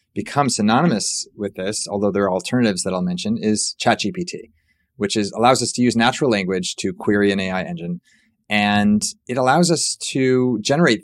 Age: 30-49